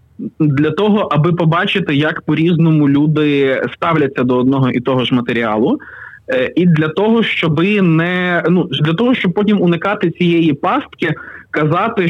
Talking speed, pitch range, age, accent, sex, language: 140 wpm, 140-175 Hz, 20-39, native, male, Ukrainian